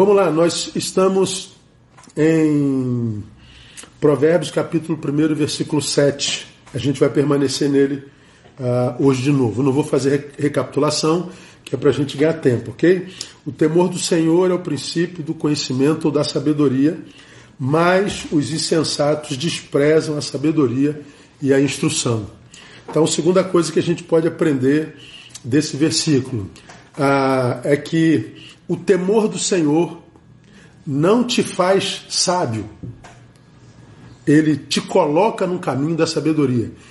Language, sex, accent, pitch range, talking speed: Portuguese, male, Brazilian, 140-180 Hz, 130 wpm